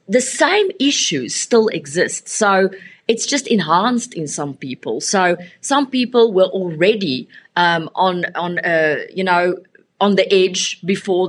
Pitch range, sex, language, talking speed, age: 175-210 Hz, female, English, 145 wpm, 30-49